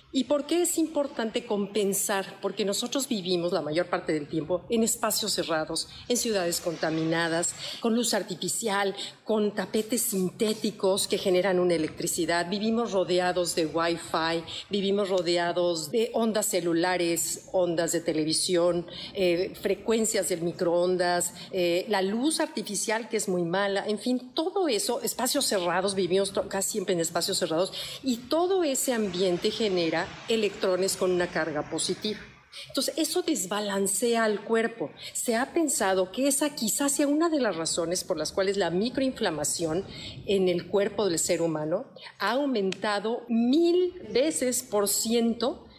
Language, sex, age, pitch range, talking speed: Spanish, female, 40-59, 175-230 Hz, 145 wpm